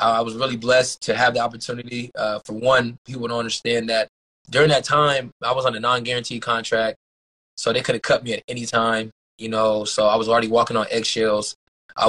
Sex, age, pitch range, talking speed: male, 20-39, 110-120 Hz, 215 wpm